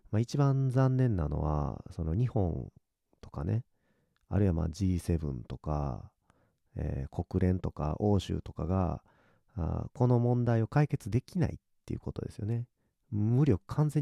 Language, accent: Japanese, native